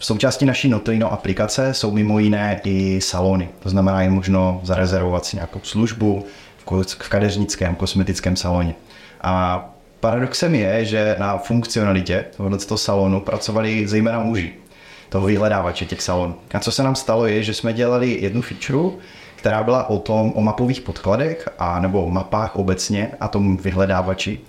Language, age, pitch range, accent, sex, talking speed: Czech, 30-49, 95-115 Hz, native, male, 155 wpm